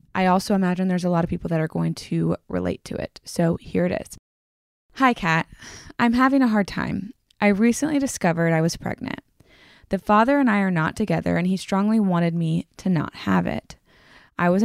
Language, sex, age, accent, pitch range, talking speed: English, female, 20-39, American, 165-210 Hz, 205 wpm